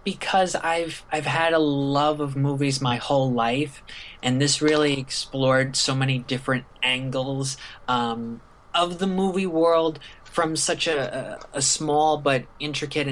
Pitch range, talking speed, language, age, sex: 125-145 Hz, 140 wpm, English, 20-39, male